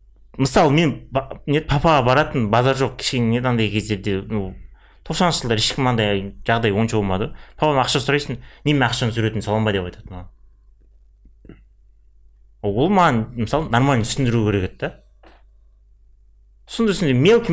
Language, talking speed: Russian, 105 wpm